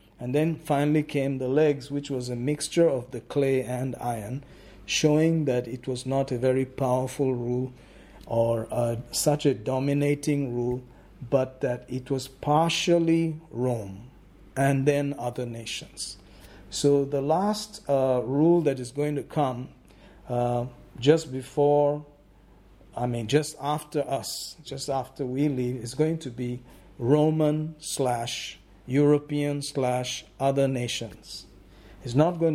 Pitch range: 125-150 Hz